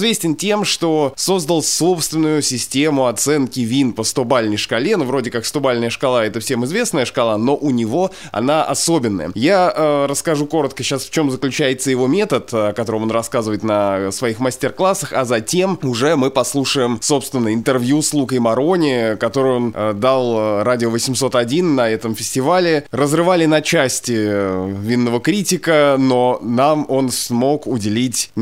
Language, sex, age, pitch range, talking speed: Russian, male, 20-39, 125-165 Hz, 150 wpm